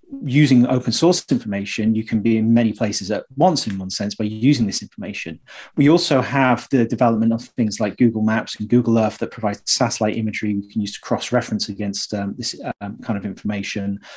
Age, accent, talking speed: 30-49, British, 210 wpm